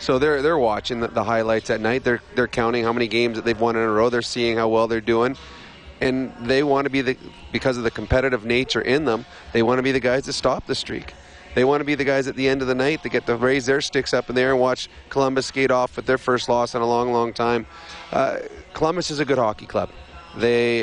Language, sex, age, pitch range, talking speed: English, male, 30-49, 115-130 Hz, 265 wpm